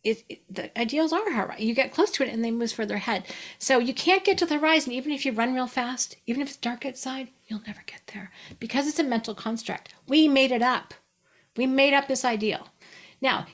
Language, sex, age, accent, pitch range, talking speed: English, female, 40-59, American, 200-275 Hz, 240 wpm